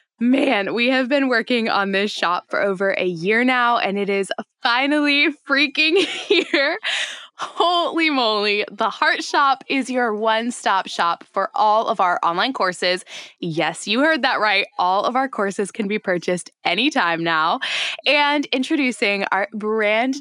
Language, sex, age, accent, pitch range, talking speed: English, female, 10-29, American, 195-265 Hz, 155 wpm